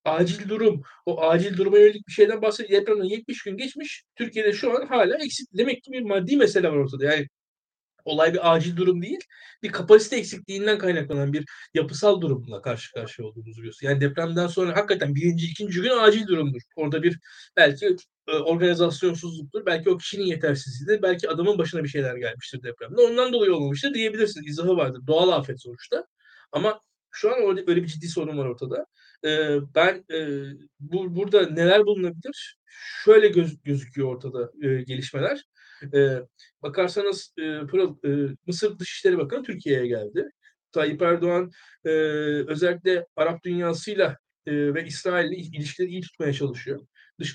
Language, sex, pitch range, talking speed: Turkish, male, 150-210 Hz, 140 wpm